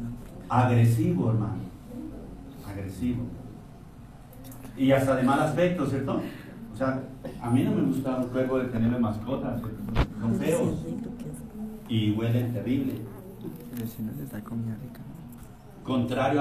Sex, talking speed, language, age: male, 100 wpm, Spanish, 60-79